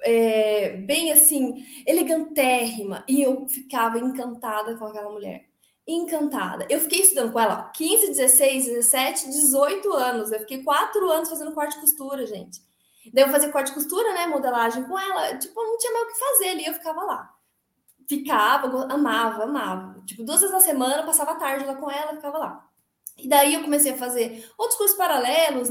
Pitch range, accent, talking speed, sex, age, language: 245-320 Hz, Brazilian, 180 wpm, female, 20-39, Portuguese